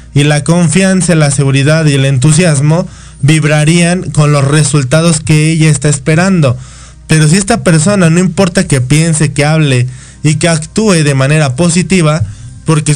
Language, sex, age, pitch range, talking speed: Spanish, male, 20-39, 140-165 Hz, 155 wpm